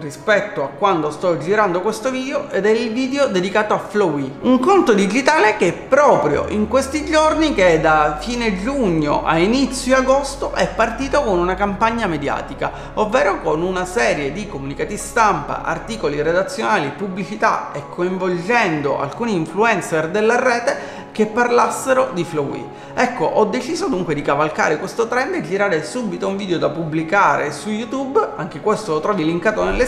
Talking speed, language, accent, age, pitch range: 160 wpm, Italian, native, 30-49, 175-240 Hz